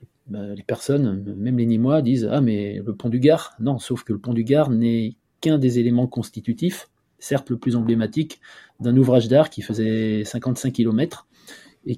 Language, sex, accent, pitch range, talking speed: French, male, French, 110-130 Hz, 195 wpm